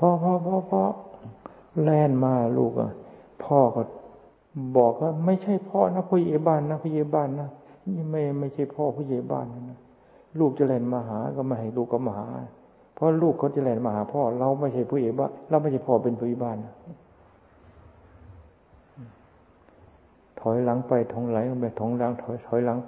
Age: 60-79